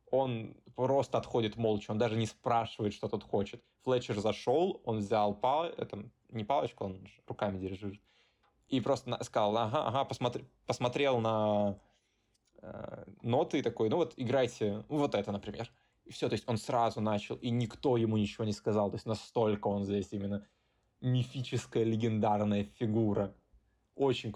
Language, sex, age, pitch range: Russian, male, 20-39, 100-115 Hz